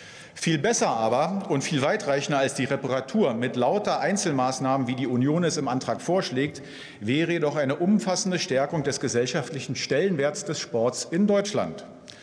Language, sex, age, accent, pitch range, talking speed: German, male, 50-69, German, 125-175 Hz, 150 wpm